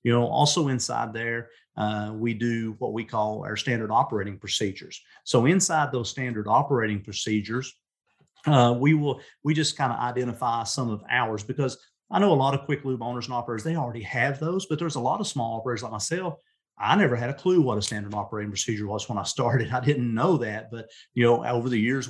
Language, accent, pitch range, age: English, American, 110-130 Hz, 40-59